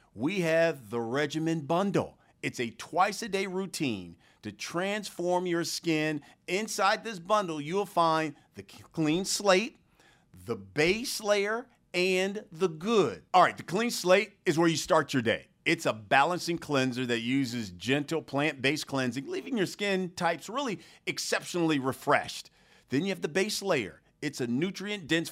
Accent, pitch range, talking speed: American, 125-180 Hz, 155 wpm